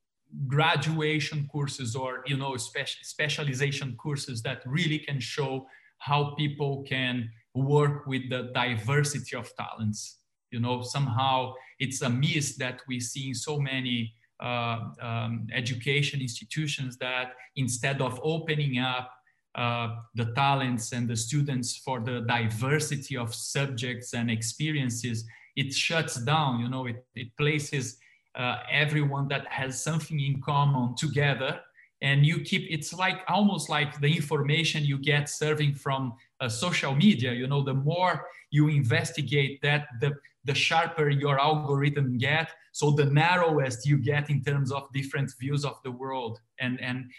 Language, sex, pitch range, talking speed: English, male, 125-150 Hz, 145 wpm